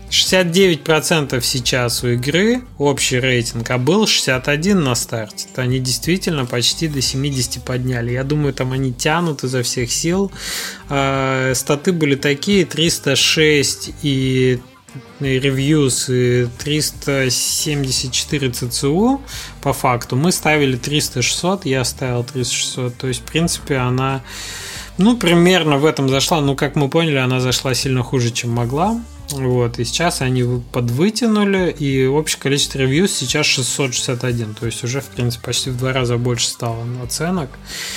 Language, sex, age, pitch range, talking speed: Russian, male, 20-39, 120-145 Hz, 135 wpm